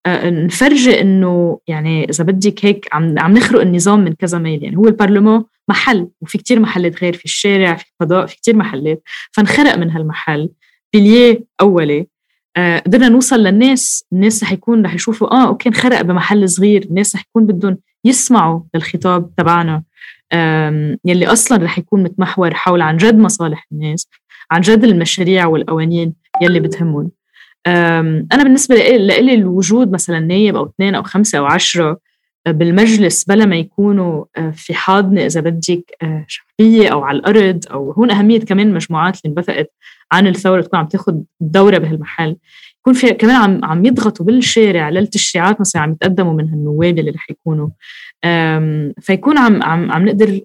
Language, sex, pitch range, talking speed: Arabic, female, 165-215 Hz, 155 wpm